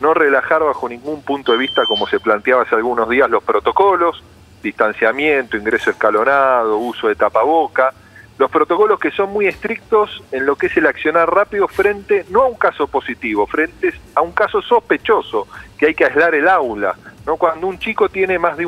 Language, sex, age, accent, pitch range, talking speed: Spanish, male, 40-59, Argentinian, 155-235 Hz, 185 wpm